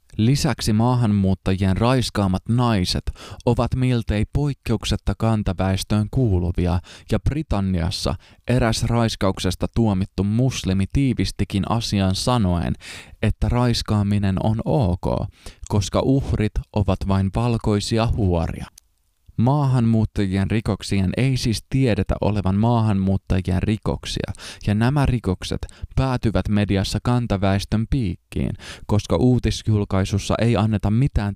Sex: male